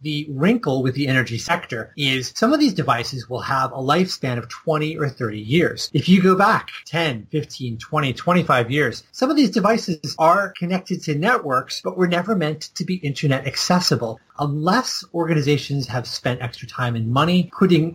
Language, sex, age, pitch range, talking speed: English, male, 30-49, 130-175 Hz, 180 wpm